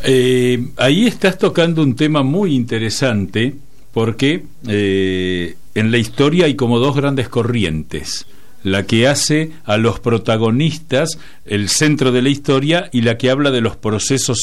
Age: 50-69